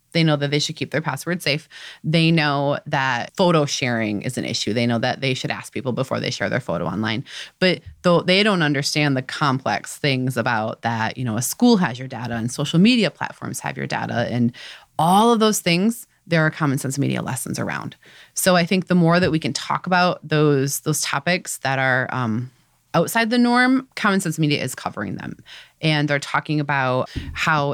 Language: English